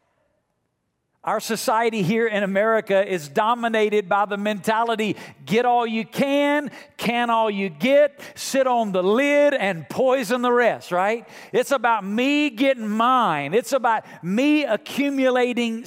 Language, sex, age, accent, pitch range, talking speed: English, male, 50-69, American, 185-255 Hz, 135 wpm